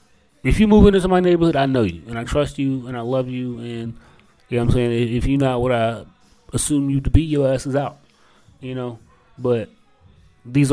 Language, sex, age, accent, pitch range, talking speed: English, male, 30-49, American, 110-140 Hz, 230 wpm